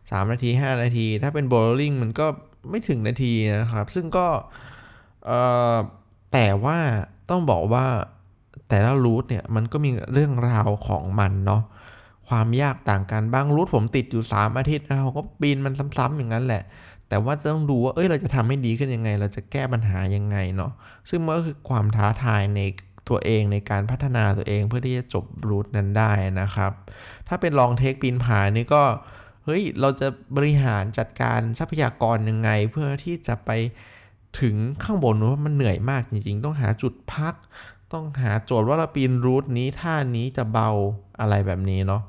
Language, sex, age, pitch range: Thai, male, 20-39, 105-135 Hz